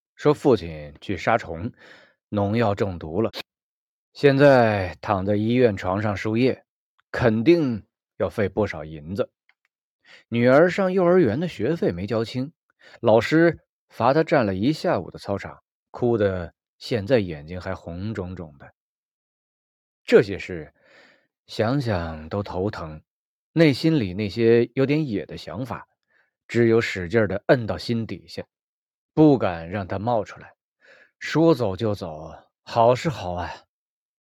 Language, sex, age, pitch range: Chinese, male, 20-39, 95-135 Hz